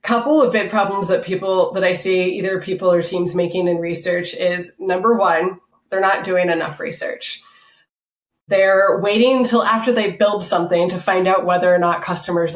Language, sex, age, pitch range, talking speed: English, female, 20-39, 175-225 Hz, 180 wpm